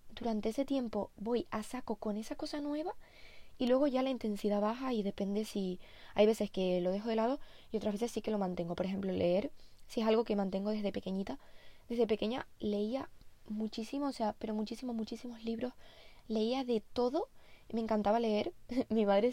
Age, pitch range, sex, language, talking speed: 20-39, 205-250 Hz, female, Spanish, 195 wpm